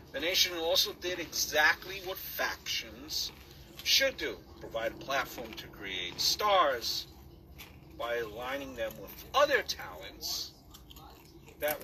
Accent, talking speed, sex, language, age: American, 110 wpm, male, English, 50-69